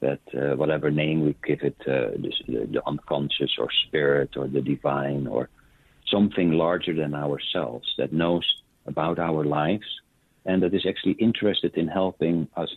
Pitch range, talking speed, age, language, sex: 75-85 Hz, 160 wpm, 60-79, English, male